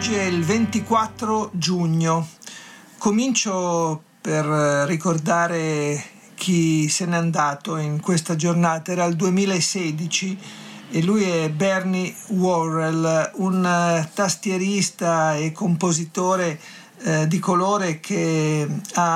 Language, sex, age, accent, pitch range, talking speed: Italian, male, 50-69, native, 160-195 Hz, 100 wpm